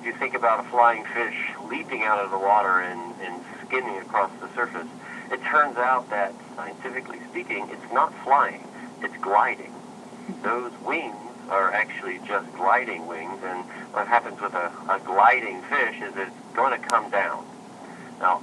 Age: 50-69